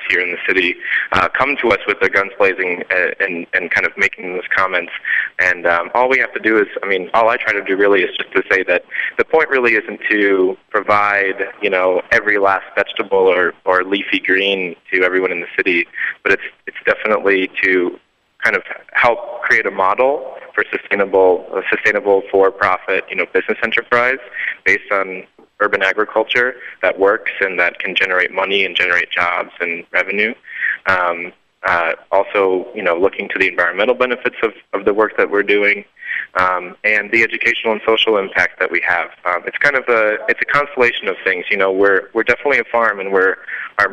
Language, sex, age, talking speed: English, male, 20-39, 195 wpm